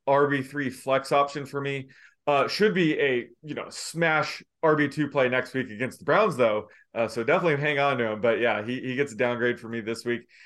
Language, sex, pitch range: English, male, 125-155 Hz